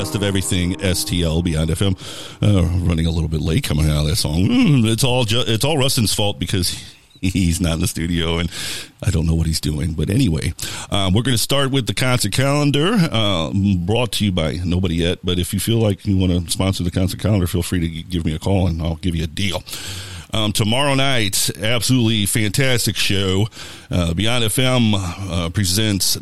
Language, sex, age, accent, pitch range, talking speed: English, male, 50-69, American, 85-115 Hz, 210 wpm